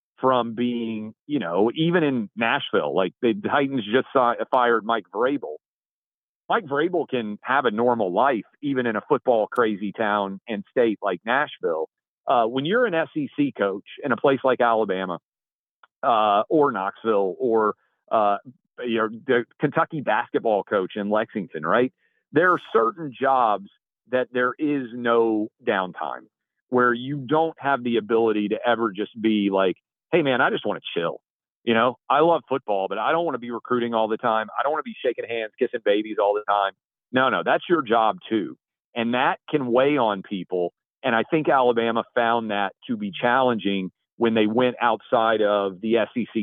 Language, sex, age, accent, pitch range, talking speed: English, male, 40-59, American, 110-145 Hz, 175 wpm